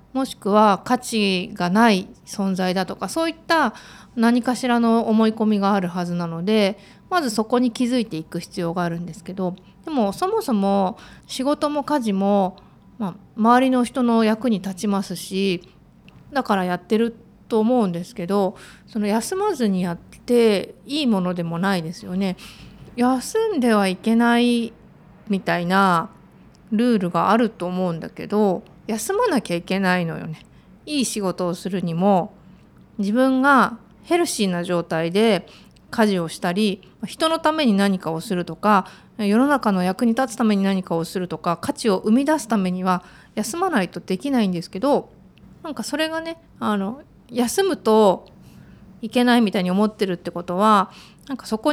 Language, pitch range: Japanese, 185-240 Hz